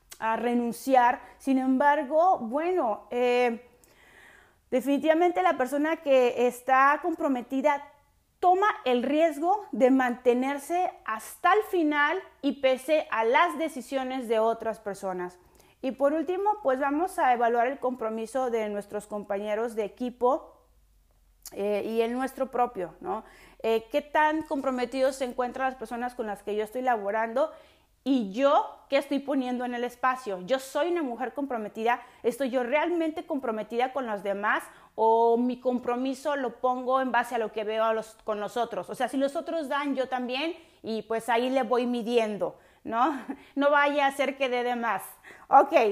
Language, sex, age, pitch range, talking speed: Spanish, female, 30-49, 235-295 Hz, 160 wpm